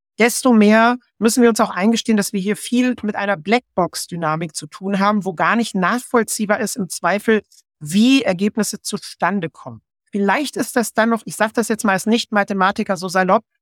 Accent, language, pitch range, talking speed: German, German, 195-235 Hz, 175 wpm